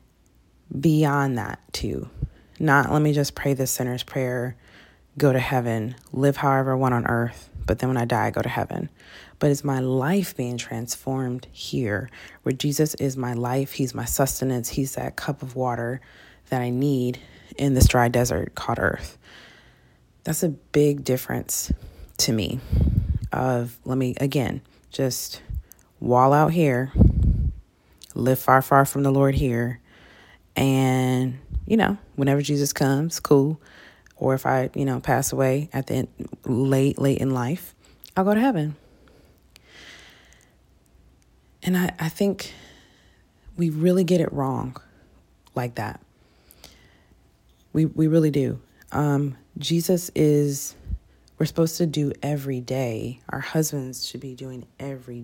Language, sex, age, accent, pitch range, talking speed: English, female, 20-39, American, 120-145 Hz, 145 wpm